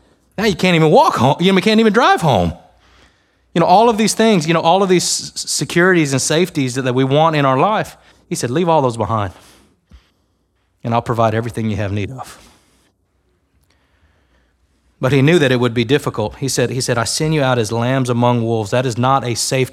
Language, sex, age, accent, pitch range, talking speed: English, male, 30-49, American, 95-145 Hz, 215 wpm